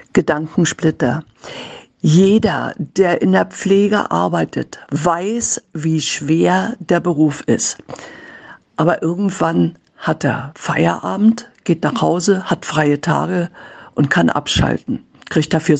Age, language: 60-79, German